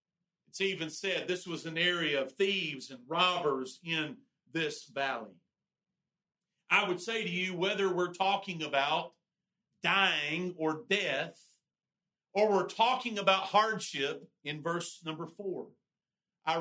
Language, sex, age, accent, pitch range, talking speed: English, male, 50-69, American, 165-200 Hz, 130 wpm